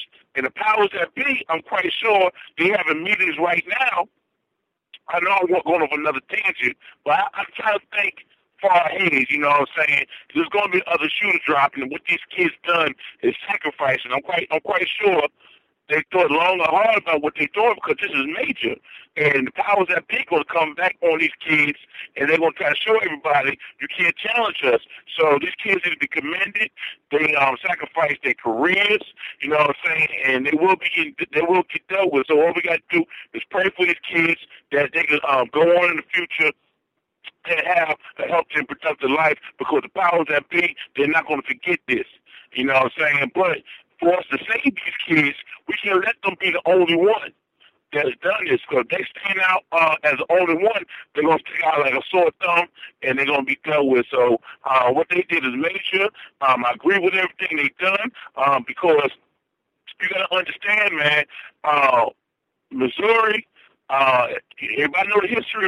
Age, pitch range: 50-69, 145-200 Hz